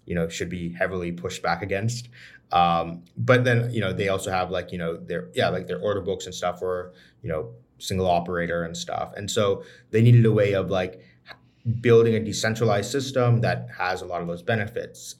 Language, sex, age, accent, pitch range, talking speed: English, male, 30-49, American, 90-135 Hz, 210 wpm